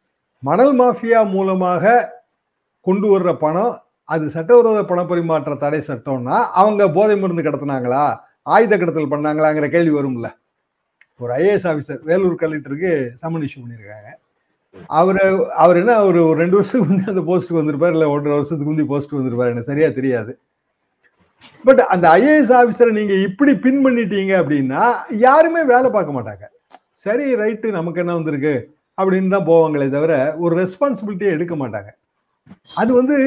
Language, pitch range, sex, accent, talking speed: Tamil, 145-205 Hz, male, native, 135 wpm